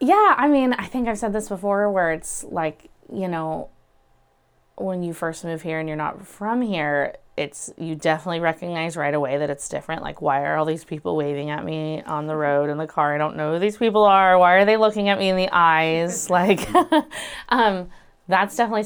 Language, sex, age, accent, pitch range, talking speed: English, female, 20-39, American, 155-200 Hz, 215 wpm